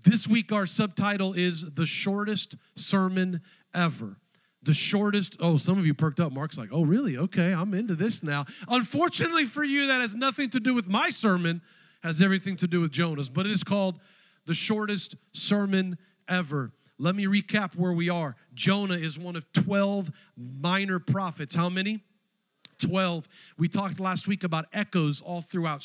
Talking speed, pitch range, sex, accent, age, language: 175 wpm, 155-195 Hz, male, American, 40-59, English